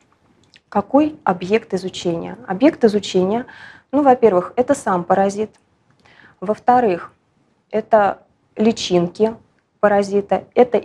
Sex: female